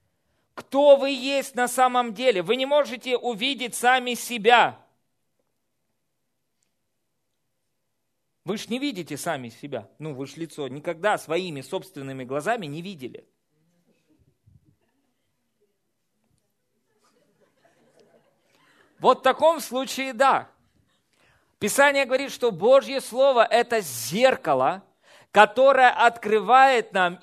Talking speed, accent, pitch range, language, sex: 95 wpm, native, 160-250 Hz, Russian, male